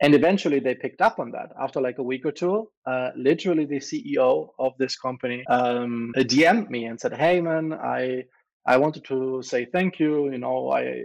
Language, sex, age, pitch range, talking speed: English, male, 20-39, 125-150 Hz, 200 wpm